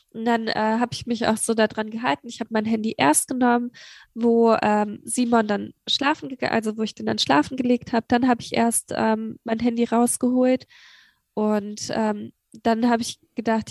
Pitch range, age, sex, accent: 215-245 Hz, 10-29, female, German